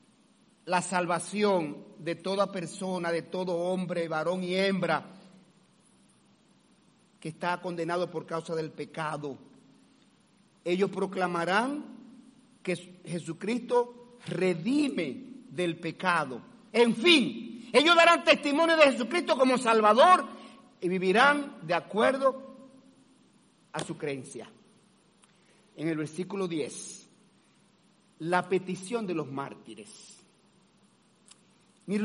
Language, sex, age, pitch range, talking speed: Spanish, male, 50-69, 185-260 Hz, 95 wpm